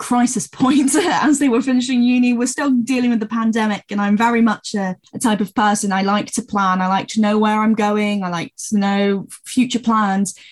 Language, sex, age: English, female, 10-29